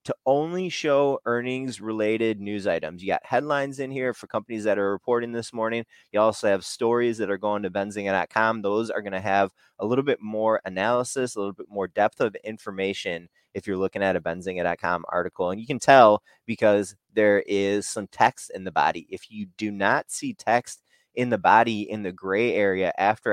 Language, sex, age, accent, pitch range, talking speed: English, male, 20-39, American, 95-115 Hz, 200 wpm